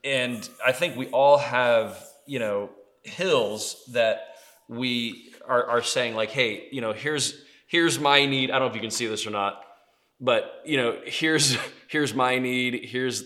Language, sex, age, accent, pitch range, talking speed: English, male, 20-39, American, 120-145 Hz, 180 wpm